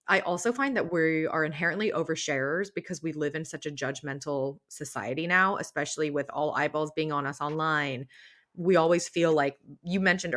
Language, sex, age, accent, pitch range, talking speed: English, female, 20-39, American, 150-180 Hz, 180 wpm